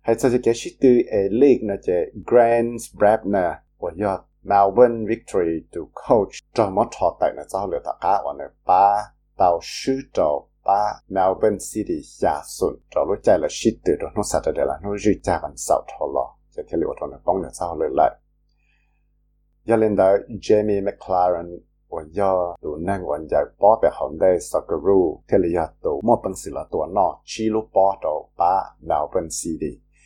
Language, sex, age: English, male, 60-79